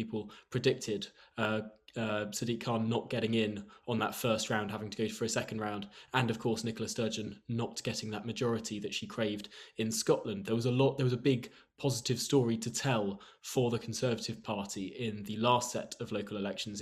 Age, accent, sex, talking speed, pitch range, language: 20-39, British, male, 205 wpm, 110-130 Hz, English